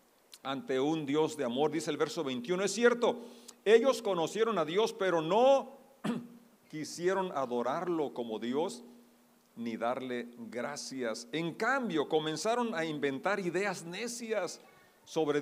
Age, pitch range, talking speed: 40-59, 125-185 Hz, 125 wpm